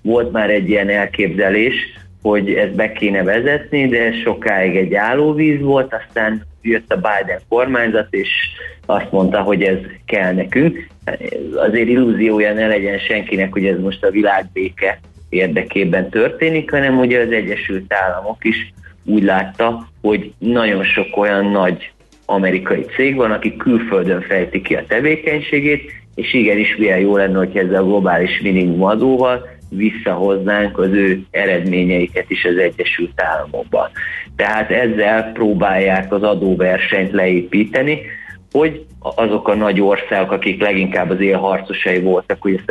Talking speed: 140 wpm